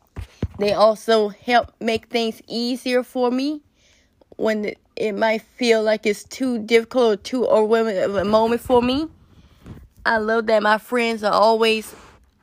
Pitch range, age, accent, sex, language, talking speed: 215-240 Hz, 20-39, American, female, English, 150 wpm